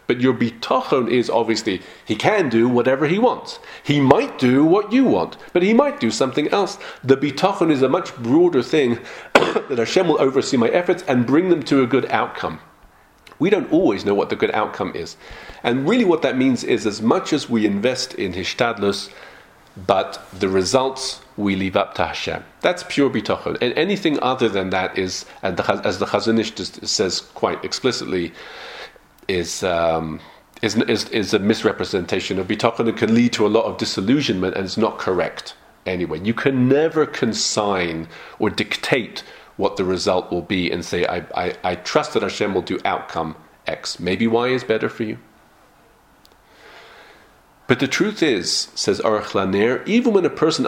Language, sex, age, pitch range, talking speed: English, male, 40-59, 100-140 Hz, 180 wpm